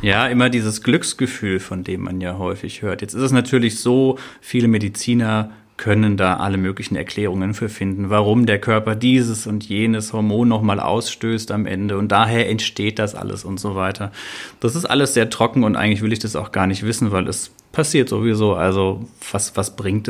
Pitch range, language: 105-125 Hz, German